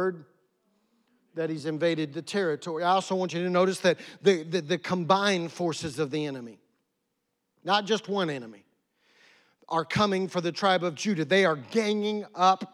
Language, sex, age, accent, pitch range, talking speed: English, male, 50-69, American, 185-250 Hz, 165 wpm